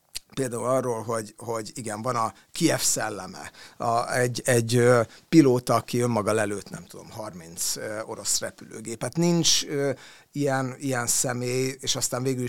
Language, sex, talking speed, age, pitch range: Hungarian, male, 135 wpm, 60-79, 115-135 Hz